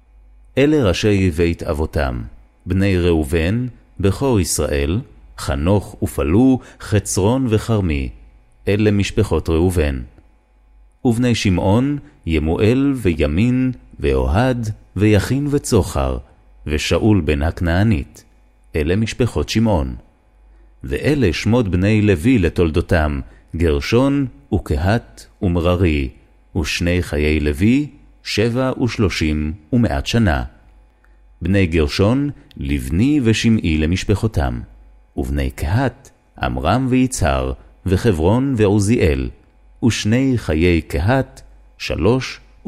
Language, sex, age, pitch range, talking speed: Hebrew, male, 30-49, 75-115 Hz, 80 wpm